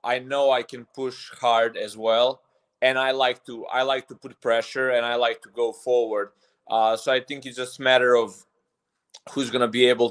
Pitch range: 115-130 Hz